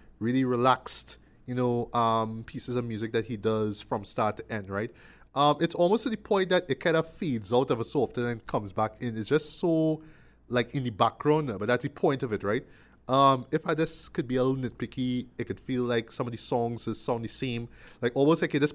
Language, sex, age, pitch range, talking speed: English, male, 20-39, 110-140 Hz, 235 wpm